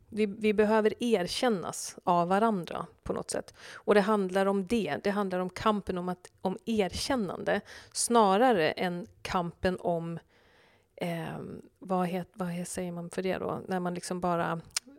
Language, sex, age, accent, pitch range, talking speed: Swedish, female, 40-59, native, 180-220 Hz, 150 wpm